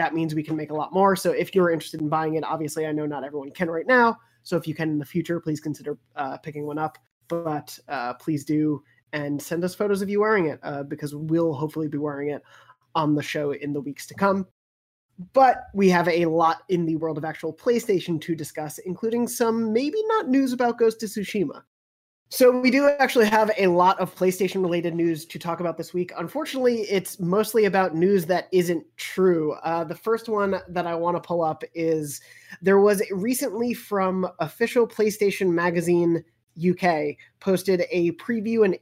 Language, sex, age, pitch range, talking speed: English, male, 20-39, 155-195 Hz, 205 wpm